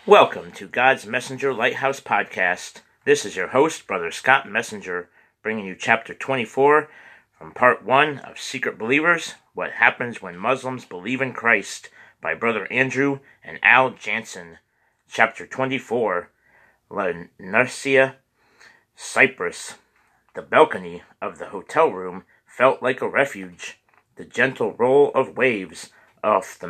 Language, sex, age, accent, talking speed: English, male, 30-49, American, 130 wpm